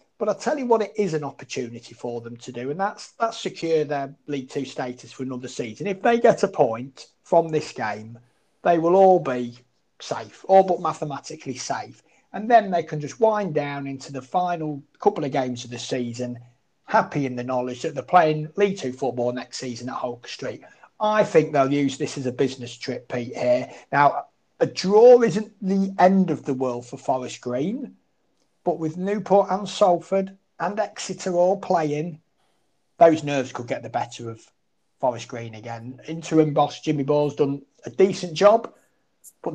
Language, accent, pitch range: English, British, 130-190 Hz